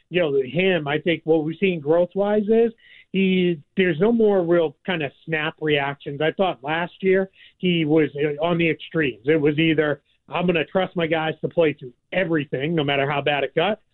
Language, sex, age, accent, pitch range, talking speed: English, male, 40-59, American, 155-195 Hz, 205 wpm